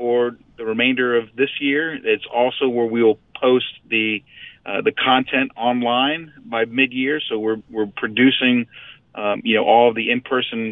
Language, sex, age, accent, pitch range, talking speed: English, male, 40-59, American, 115-130 Hz, 160 wpm